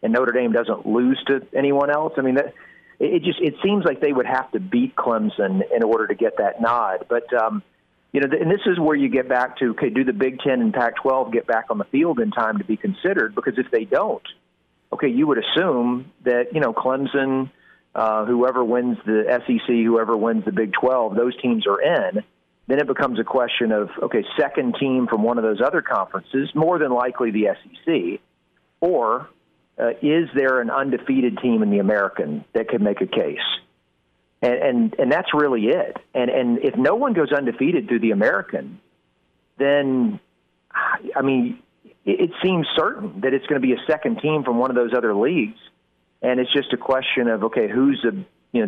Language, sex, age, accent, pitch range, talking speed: English, male, 40-59, American, 115-150 Hz, 205 wpm